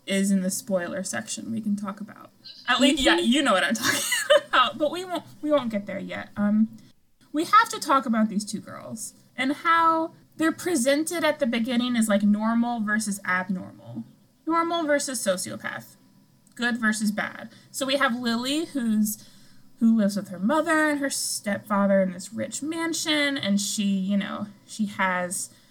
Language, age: English, 20-39